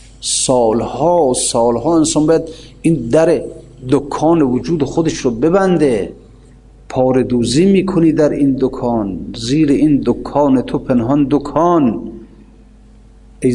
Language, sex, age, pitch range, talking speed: Persian, male, 50-69, 125-165 Hz, 105 wpm